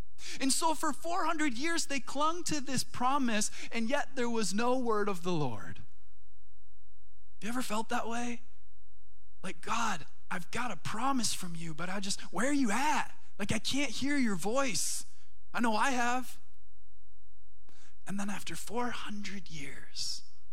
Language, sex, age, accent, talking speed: English, male, 20-39, American, 160 wpm